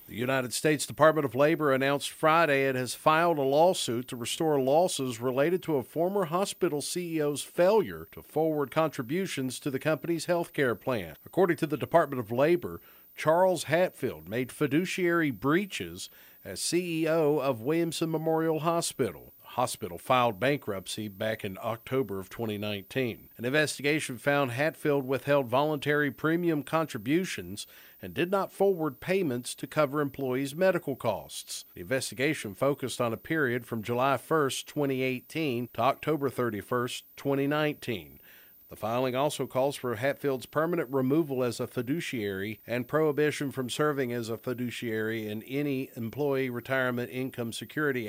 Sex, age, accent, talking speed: male, 50-69, American, 140 wpm